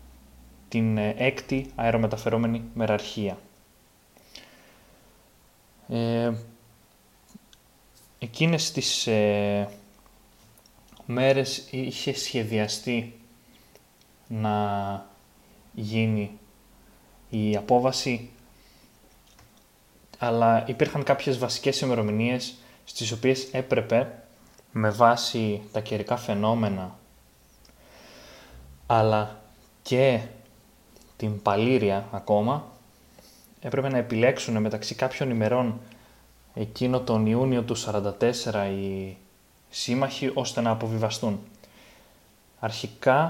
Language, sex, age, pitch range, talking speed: Greek, male, 20-39, 105-125 Hz, 70 wpm